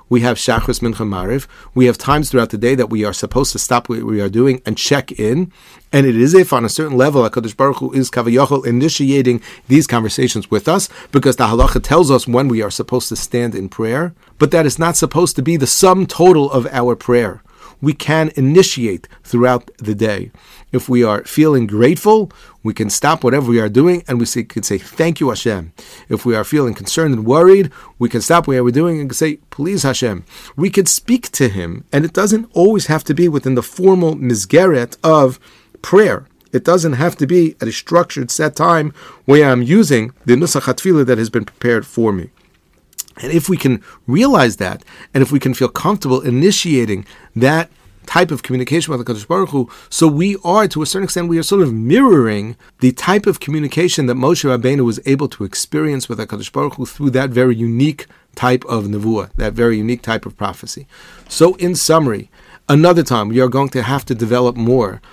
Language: English